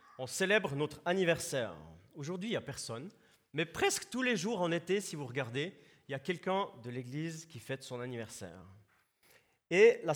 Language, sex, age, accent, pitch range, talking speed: French, male, 40-59, French, 145-205 Hz, 185 wpm